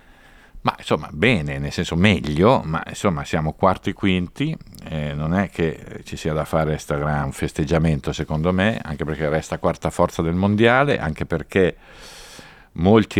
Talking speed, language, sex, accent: 150 wpm, Italian, male, native